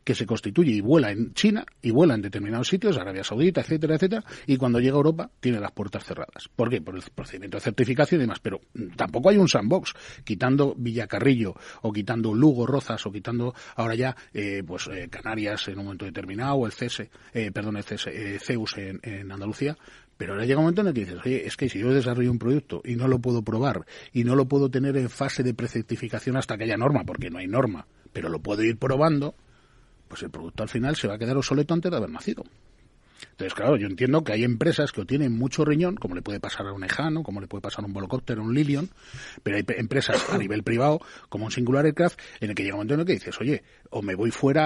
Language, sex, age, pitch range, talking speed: Spanish, male, 30-49, 110-145 Hz, 245 wpm